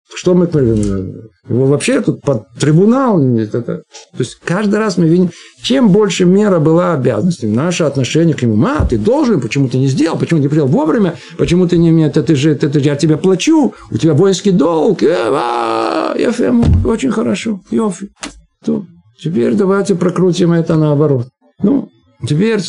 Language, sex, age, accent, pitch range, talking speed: Russian, male, 50-69, native, 145-195 Hz, 165 wpm